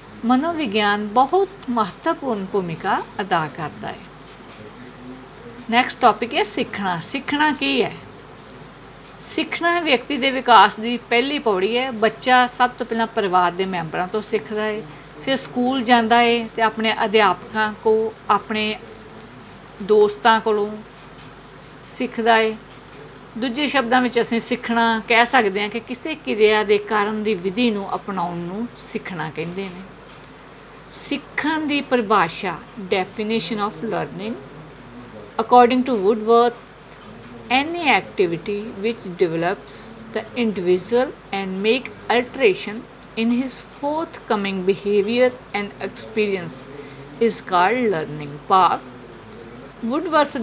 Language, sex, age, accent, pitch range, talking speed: English, female, 50-69, Indian, 195-245 Hz, 90 wpm